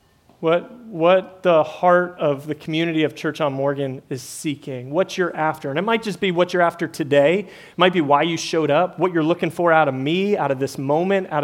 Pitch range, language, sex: 145-180 Hz, English, male